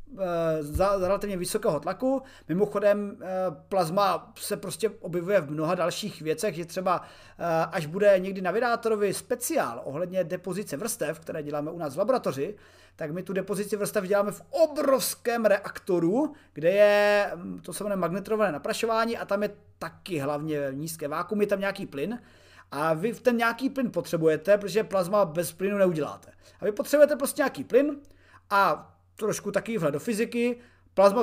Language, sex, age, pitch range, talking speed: Czech, male, 30-49, 170-215 Hz, 150 wpm